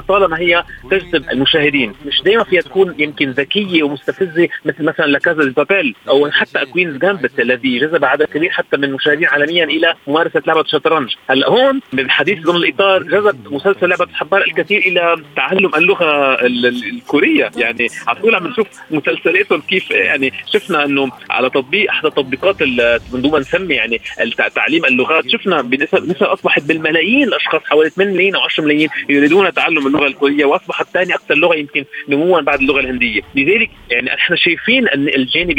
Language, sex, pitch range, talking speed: Arabic, male, 140-190 Hz, 160 wpm